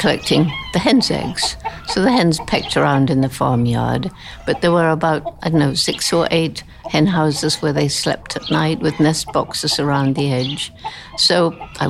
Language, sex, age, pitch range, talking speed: English, female, 60-79, 130-160 Hz, 185 wpm